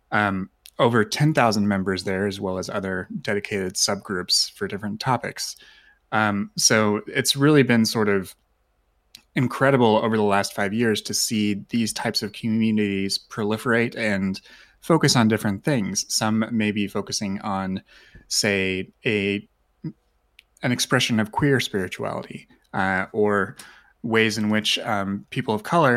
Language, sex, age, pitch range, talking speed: English, male, 30-49, 100-120 Hz, 140 wpm